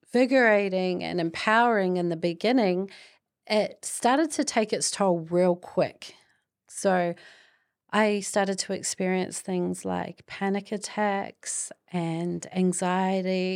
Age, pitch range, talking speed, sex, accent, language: 30-49, 175-210 Hz, 105 wpm, female, Australian, English